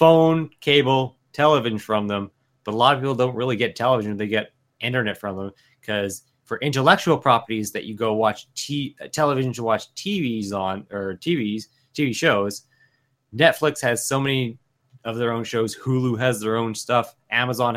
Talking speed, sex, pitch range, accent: 170 wpm, male, 105-130 Hz, American